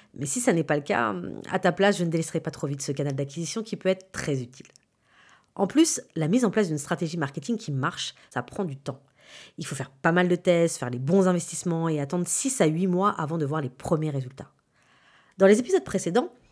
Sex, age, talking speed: female, 40-59, 240 wpm